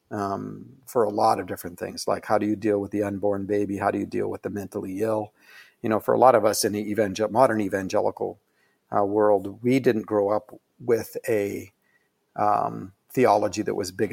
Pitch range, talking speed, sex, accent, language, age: 100-115 Hz, 210 wpm, male, American, English, 50-69